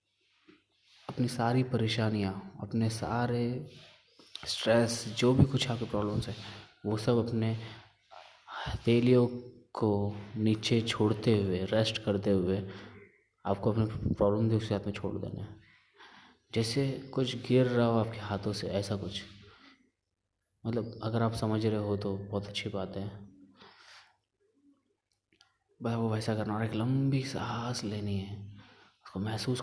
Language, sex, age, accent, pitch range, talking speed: Hindi, male, 20-39, native, 100-115 Hz, 130 wpm